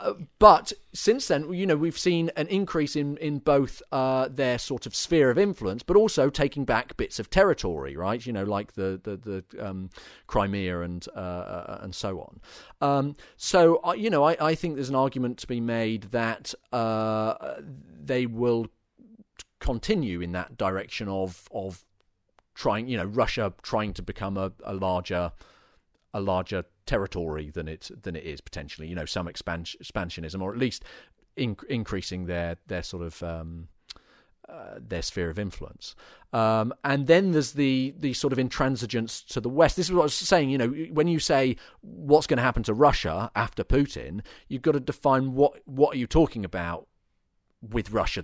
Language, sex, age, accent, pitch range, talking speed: English, male, 40-59, British, 95-135 Hz, 180 wpm